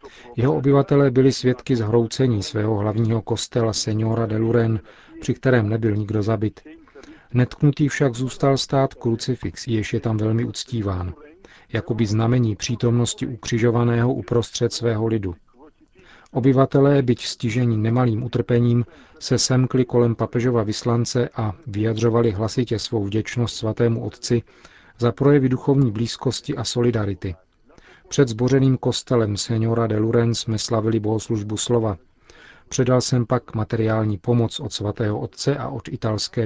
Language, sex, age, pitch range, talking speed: Czech, male, 40-59, 110-125 Hz, 130 wpm